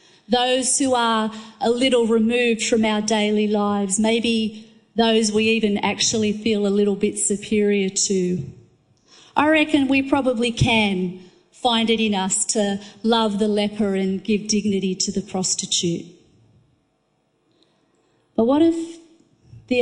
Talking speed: 135 wpm